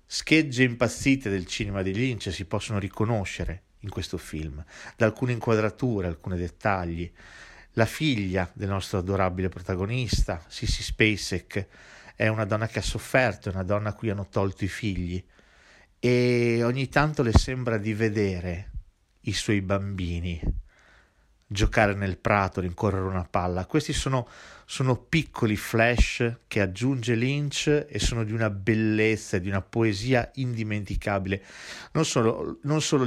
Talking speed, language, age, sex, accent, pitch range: 140 wpm, Italian, 40-59, male, native, 95-125 Hz